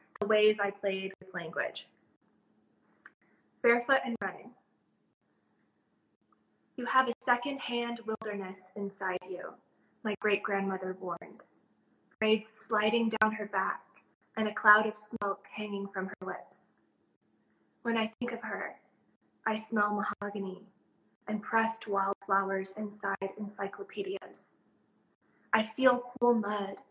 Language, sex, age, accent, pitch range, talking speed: English, female, 20-39, American, 200-225 Hz, 110 wpm